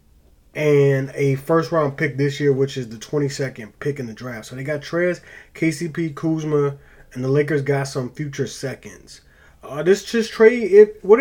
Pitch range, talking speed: 130-160 Hz, 175 wpm